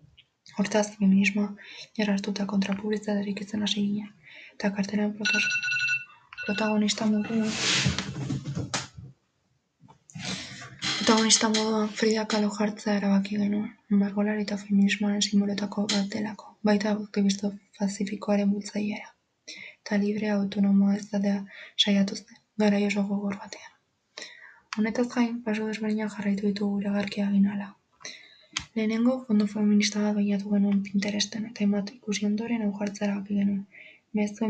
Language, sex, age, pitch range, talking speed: Spanish, female, 20-39, 200-215 Hz, 105 wpm